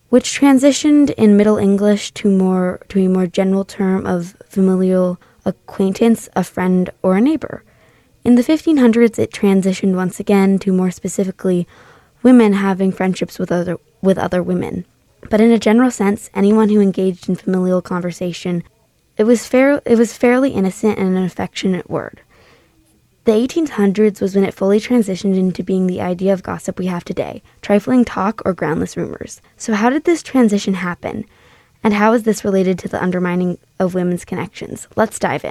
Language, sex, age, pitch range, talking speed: English, female, 20-39, 185-220 Hz, 170 wpm